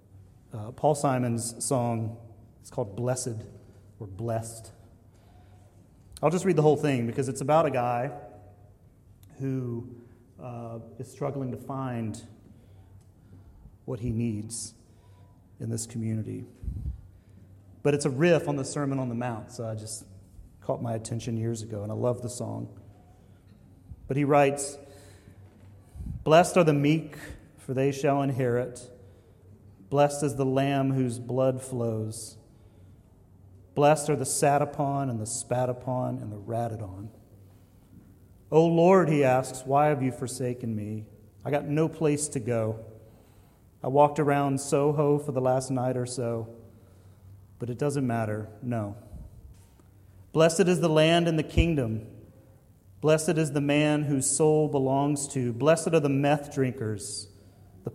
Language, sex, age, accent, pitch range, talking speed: English, male, 30-49, American, 100-140 Hz, 140 wpm